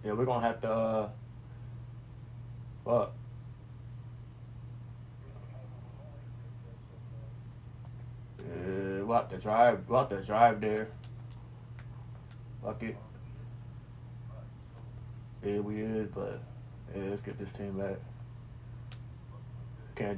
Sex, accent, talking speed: male, American, 90 wpm